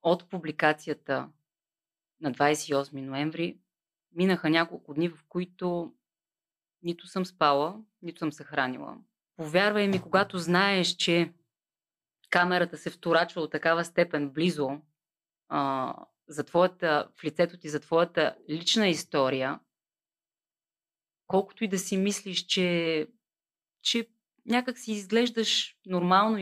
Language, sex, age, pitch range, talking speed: Bulgarian, female, 20-39, 150-180 Hz, 115 wpm